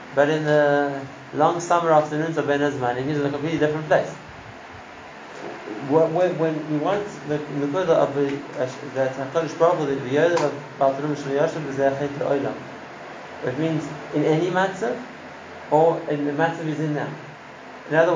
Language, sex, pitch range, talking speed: English, male, 135-155 Hz, 165 wpm